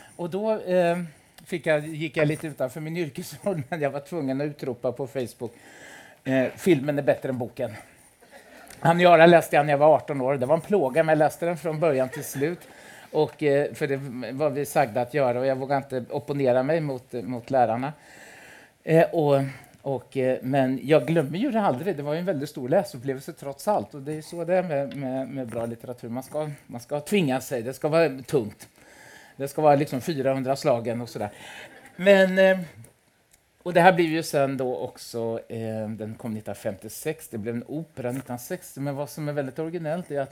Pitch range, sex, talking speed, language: 130-160 Hz, male, 205 wpm, Swedish